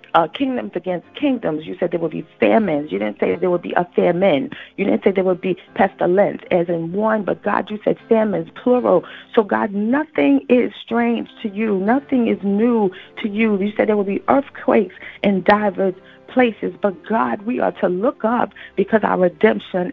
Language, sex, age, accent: English, female, 40-59, American